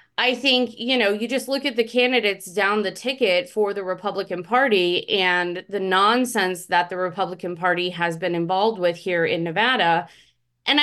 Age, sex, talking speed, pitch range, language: 20-39, female, 175 wpm, 180-235 Hz, English